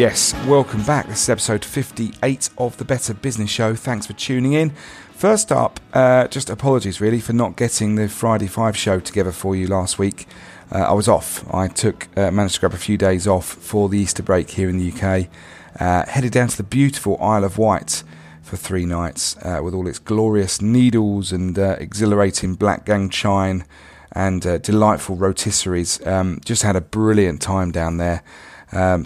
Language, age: English, 40-59